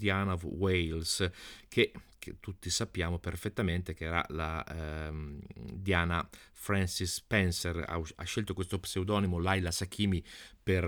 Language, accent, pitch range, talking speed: Italian, native, 85-100 Hz, 125 wpm